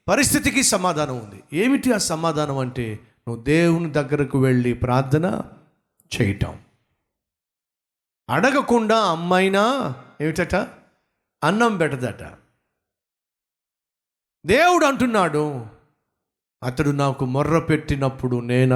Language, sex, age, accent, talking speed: Telugu, male, 50-69, native, 80 wpm